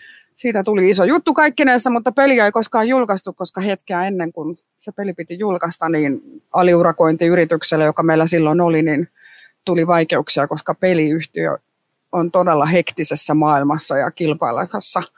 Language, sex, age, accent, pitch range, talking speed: Finnish, female, 30-49, native, 170-215 Hz, 140 wpm